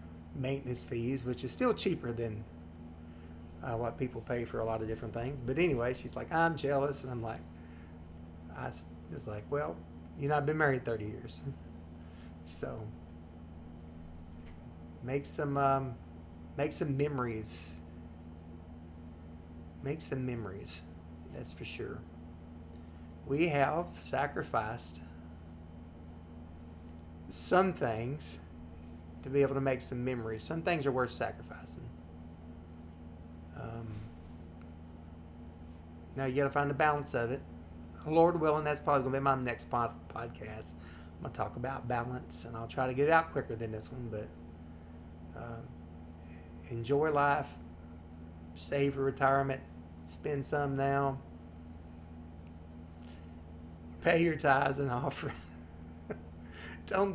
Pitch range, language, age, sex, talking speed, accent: 80-130 Hz, English, 30-49, male, 125 wpm, American